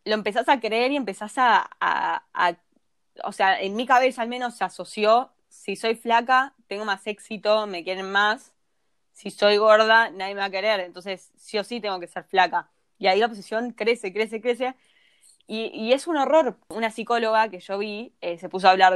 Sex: female